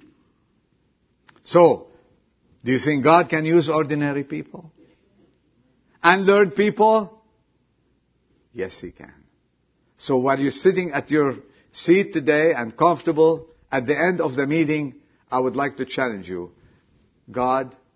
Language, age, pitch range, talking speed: English, 50-69, 110-170 Hz, 125 wpm